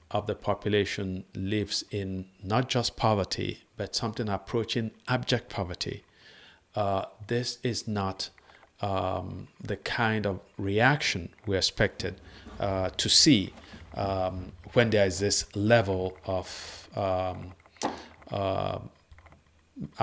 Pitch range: 95-115 Hz